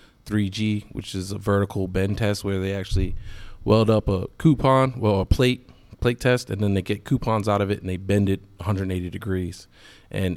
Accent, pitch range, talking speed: American, 95-105 Hz, 195 wpm